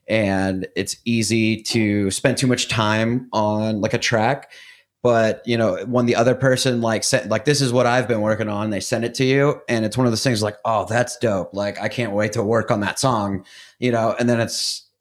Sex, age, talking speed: male, 30-49, 230 wpm